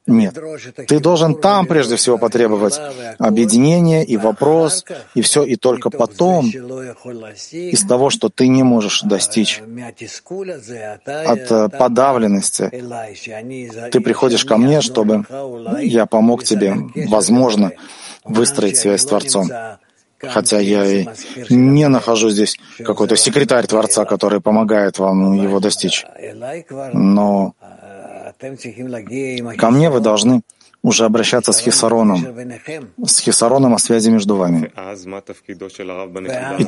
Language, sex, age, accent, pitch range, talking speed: Russian, male, 30-49, native, 105-135 Hz, 110 wpm